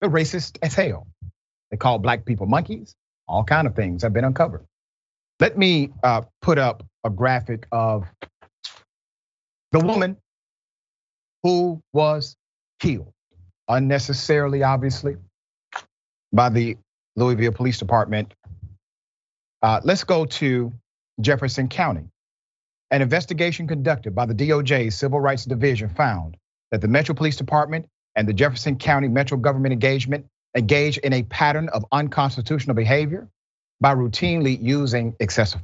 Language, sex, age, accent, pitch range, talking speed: English, male, 40-59, American, 115-150 Hz, 125 wpm